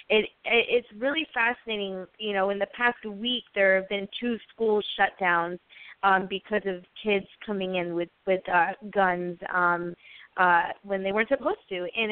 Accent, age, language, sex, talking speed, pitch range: American, 20-39, English, female, 175 wpm, 185-220 Hz